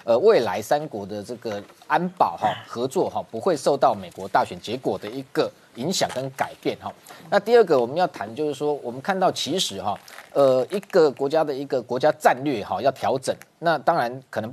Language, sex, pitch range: Chinese, male, 135-180 Hz